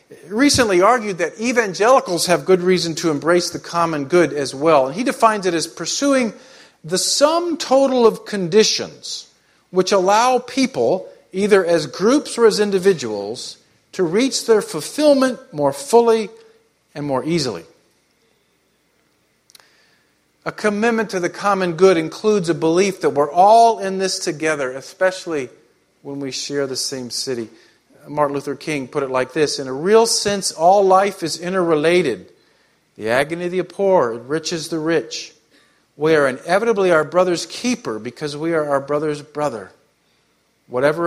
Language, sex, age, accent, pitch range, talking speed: English, male, 50-69, American, 145-205 Hz, 145 wpm